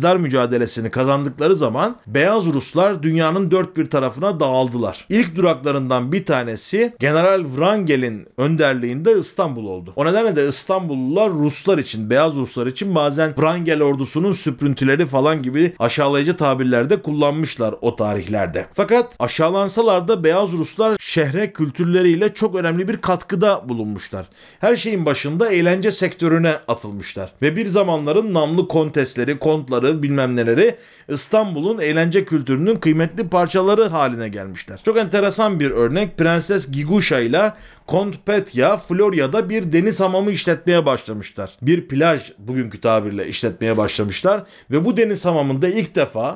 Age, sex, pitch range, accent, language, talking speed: 40-59, male, 135-195 Hz, native, Turkish, 125 wpm